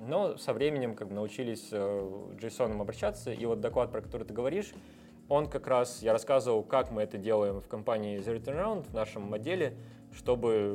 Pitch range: 110-150 Hz